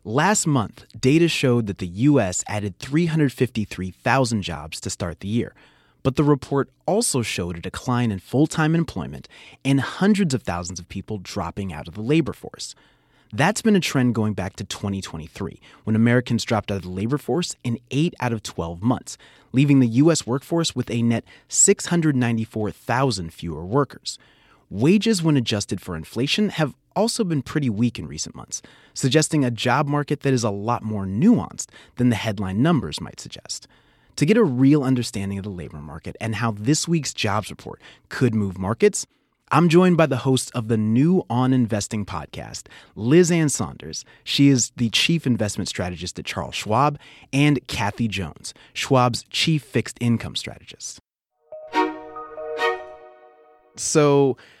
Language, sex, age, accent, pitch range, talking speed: English, male, 30-49, American, 105-145 Hz, 165 wpm